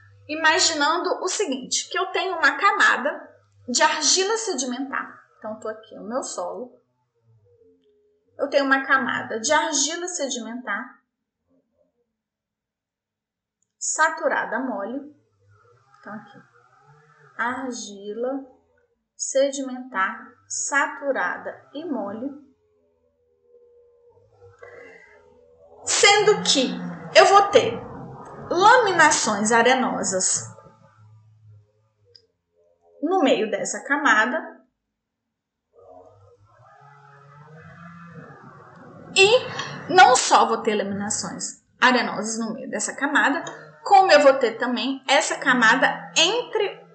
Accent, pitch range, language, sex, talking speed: Brazilian, 200-310 Hz, Portuguese, female, 80 wpm